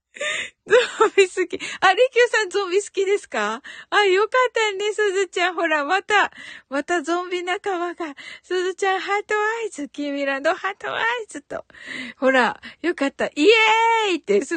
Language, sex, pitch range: Japanese, female, 230-380 Hz